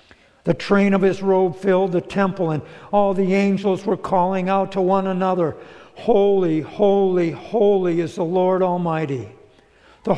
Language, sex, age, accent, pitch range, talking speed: English, male, 60-79, American, 165-210 Hz, 155 wpm